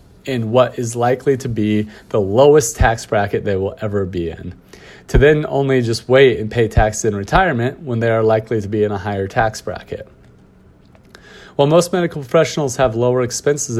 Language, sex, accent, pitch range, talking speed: English, male, American, 105-130 Hz, 185 wpm